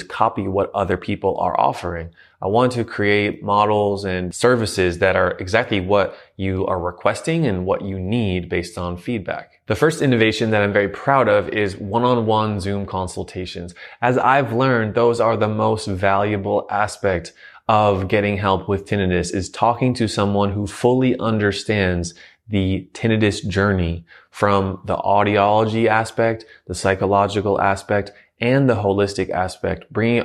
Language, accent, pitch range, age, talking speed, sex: English, American, 95-115 Hz, 20-39, 150 wpm, male